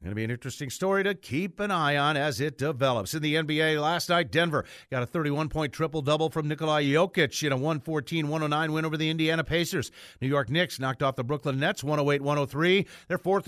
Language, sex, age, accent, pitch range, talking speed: English, male, 50-69, American, 145-190 Hz, 205 wpm